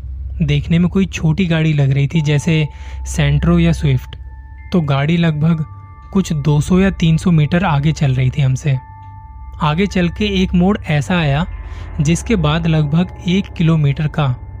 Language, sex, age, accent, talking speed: Hindi, male, 20-39, native, 155 wpm